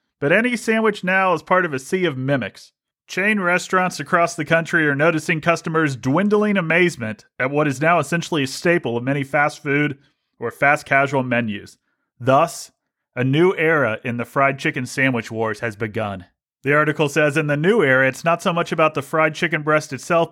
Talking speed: 190 wpm